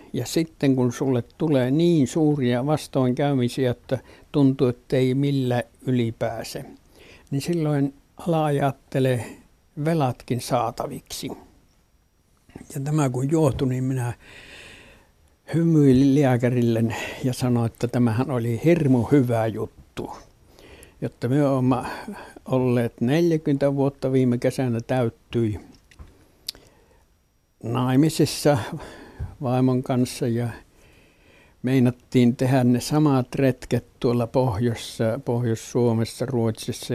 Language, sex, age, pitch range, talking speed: Finnish, male, 60-79, 120-140 Hz, 90 wpm